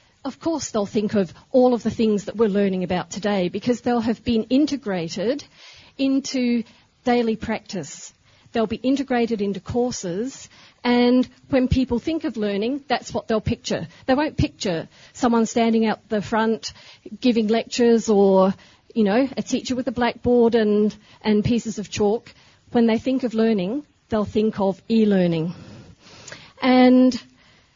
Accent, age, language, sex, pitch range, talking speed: Australian, 40-59, English, female, 210-250 Hz, 150 wpm